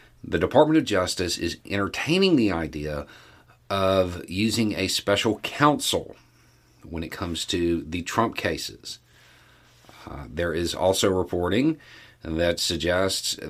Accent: American